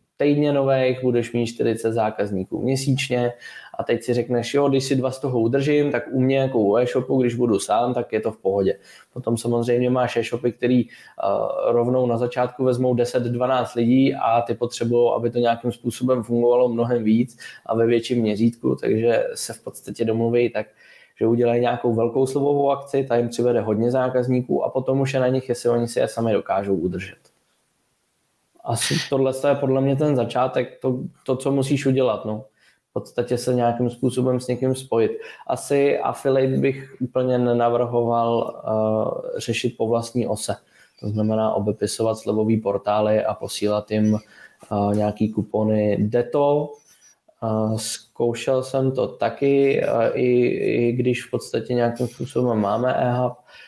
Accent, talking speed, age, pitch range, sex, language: native, 165 wpm, 20-39, 115-130 Hz, male, Czech